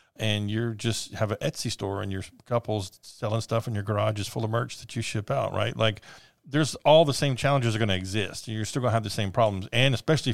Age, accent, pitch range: 40-59, American, 100-115 Hz